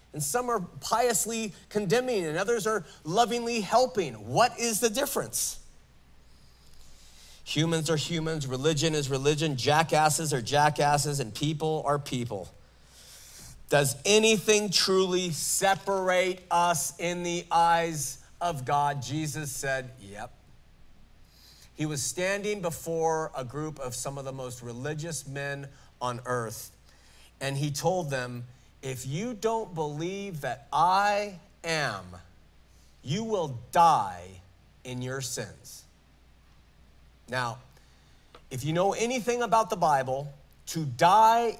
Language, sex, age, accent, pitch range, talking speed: English, male, 40-59, American, 120-185 Hz, 120 wpm